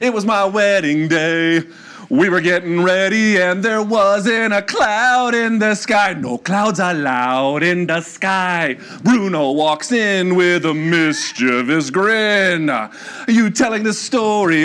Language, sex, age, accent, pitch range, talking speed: English, male, 40-59, American, 170-220 Hz, 145 wpm